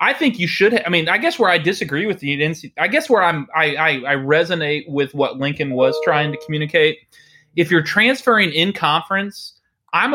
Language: English